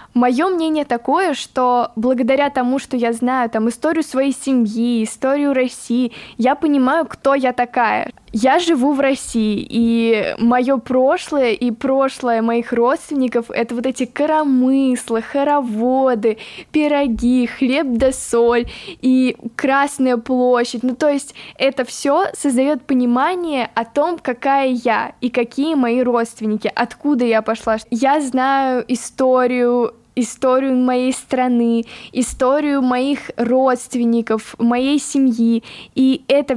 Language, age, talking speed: Russian, 10-29, 125 wpm